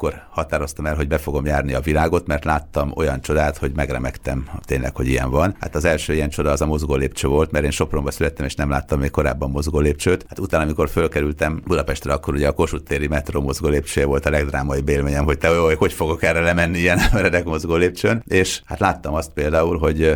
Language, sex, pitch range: Hungarian, male, 70-80 Hz